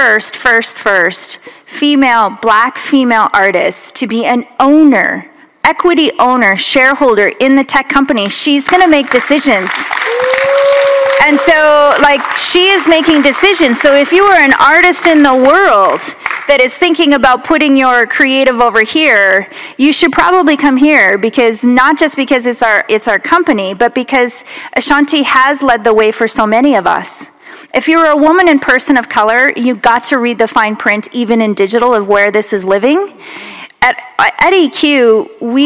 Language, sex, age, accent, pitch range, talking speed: English, female, 40-59, American, 240-315 Hz, 170 wpm